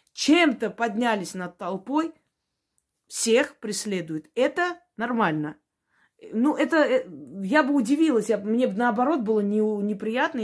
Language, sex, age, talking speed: Russian, female, 20-39, 105 wpm